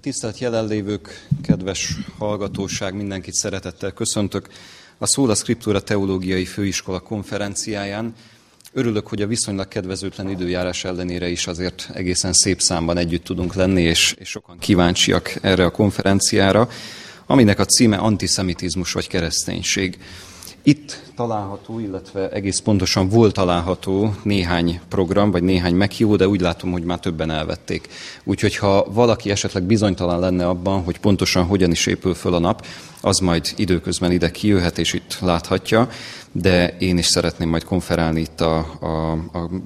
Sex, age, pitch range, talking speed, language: male, 30-49, 90-105 Hz, 140 wpm, English